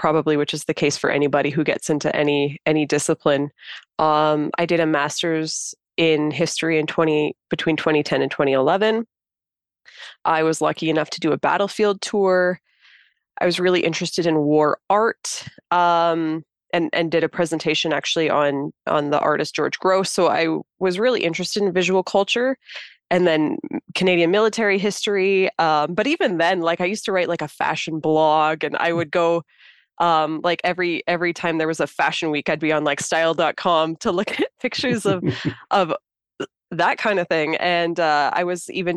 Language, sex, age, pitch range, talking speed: English, female, 20-39, 155-175 Hz, 180 wpm